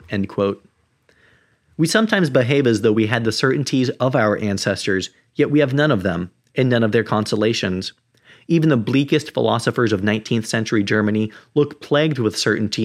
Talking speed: 175 wpm